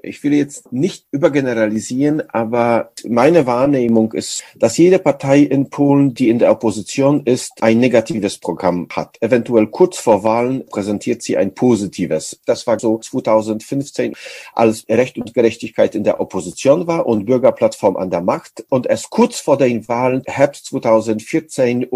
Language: English